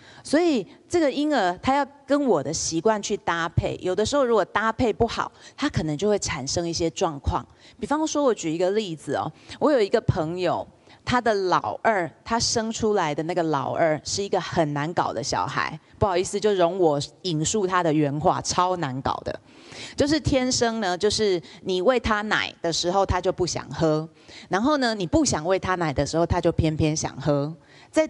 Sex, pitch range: female, 155-220 Hz